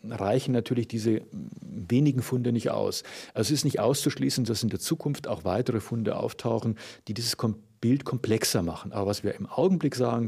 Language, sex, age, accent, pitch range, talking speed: German, male, 40-59, German, 100-130 Hz, 185 wpm